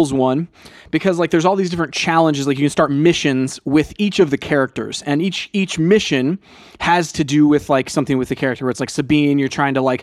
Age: 20-39